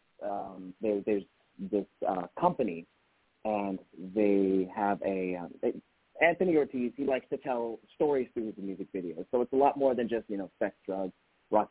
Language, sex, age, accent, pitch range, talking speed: English, male, 30-49, American, 95-120 Hz, 180 wpm